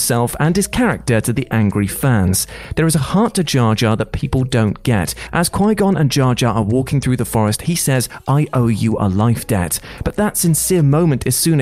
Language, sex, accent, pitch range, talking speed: English, male, British, 115-160 Hz, 220 wpm